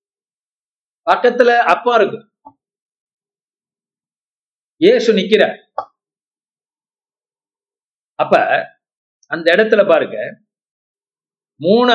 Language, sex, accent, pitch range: Tamil, male, native, 205-255 Hz